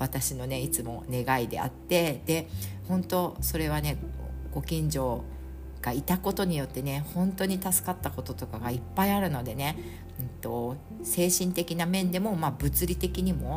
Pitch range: 120-180 Hz